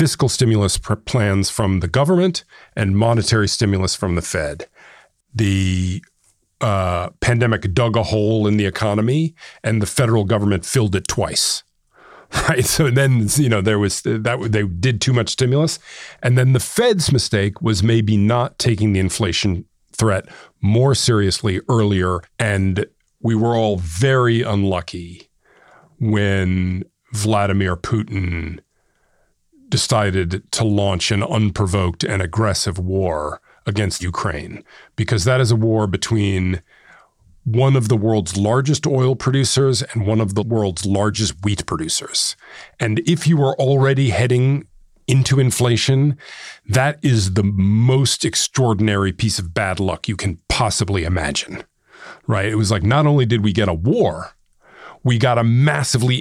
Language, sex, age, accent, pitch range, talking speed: English, male, 40-59, American, 100-125 Hz, 145 wpm